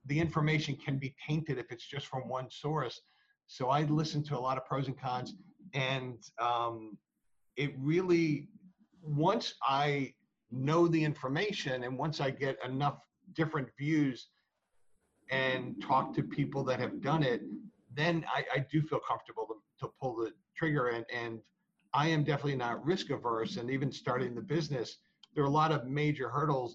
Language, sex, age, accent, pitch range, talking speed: English, male, 50-69, American, 130-155 Hz, 170 wpm